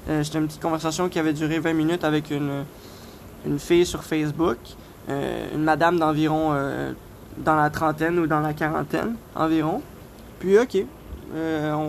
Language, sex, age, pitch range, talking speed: English, male, 20-39, 155-180 Hz, 170 wpm